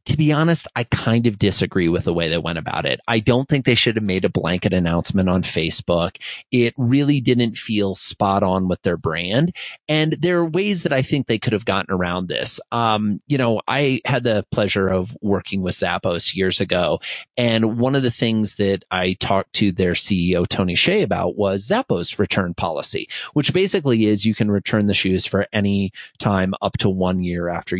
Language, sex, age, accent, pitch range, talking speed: English, male, 30-49, American, 100-155 Hz, 205 wpm